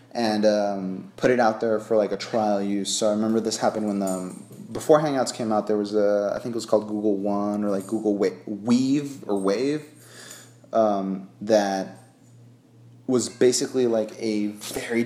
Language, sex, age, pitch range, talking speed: English, male, 30-49, 100-115 Hz, 180 wpm